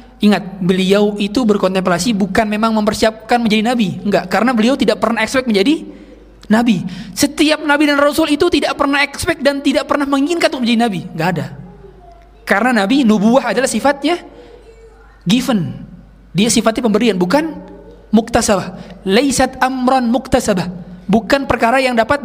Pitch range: 210-280 Hz